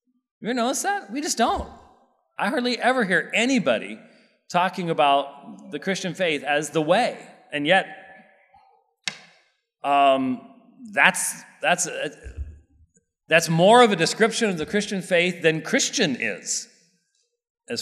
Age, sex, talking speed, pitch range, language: 40-59, male, 130 wpm, 140-230 Hz, English